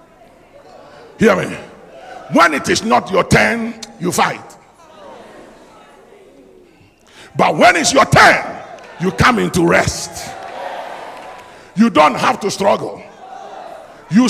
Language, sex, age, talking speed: English, male, 50-69, 105 wpm